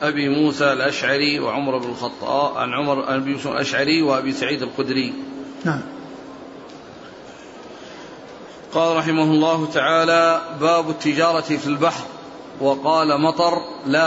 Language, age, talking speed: Arabic, 40-59, 105 wpm